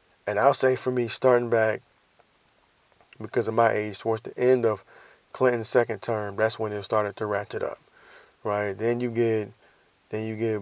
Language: English